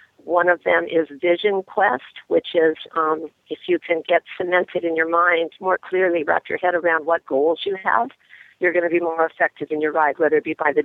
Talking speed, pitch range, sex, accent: 225 wpm, 160-180 Hz, female, American